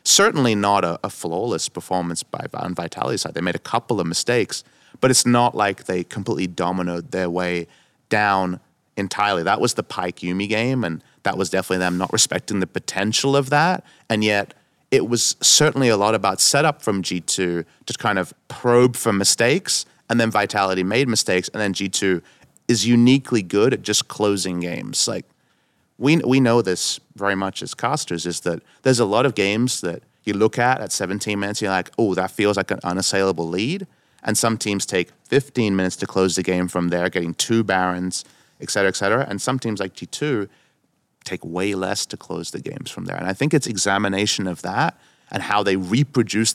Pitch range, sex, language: 95-115 Hz, male, English